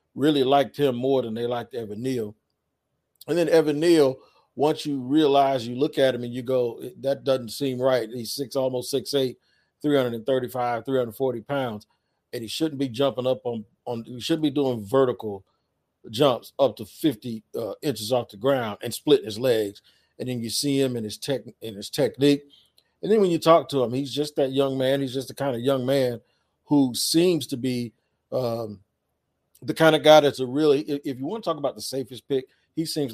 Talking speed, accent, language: 215 wpm, American, English